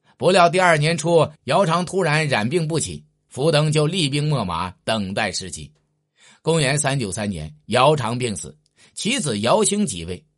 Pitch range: 105-165 Hz